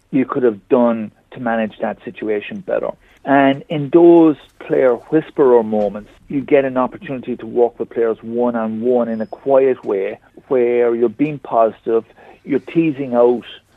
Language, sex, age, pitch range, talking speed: English, male, 50-69, 115-135 Hz, 155 wpm